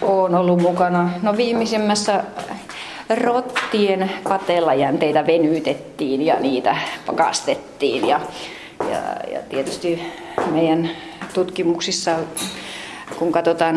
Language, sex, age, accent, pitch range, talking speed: Finnish, female, 30-49, native, 155-185 Hz, 85 wpm